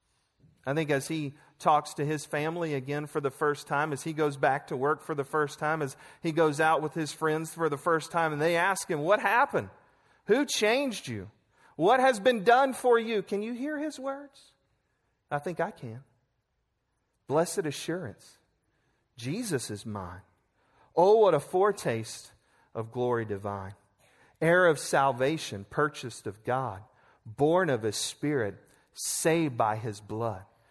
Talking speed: 165 wpm